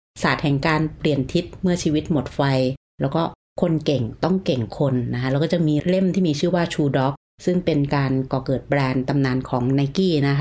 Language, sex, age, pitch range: Thai, female, 30-49, 135-170 Hz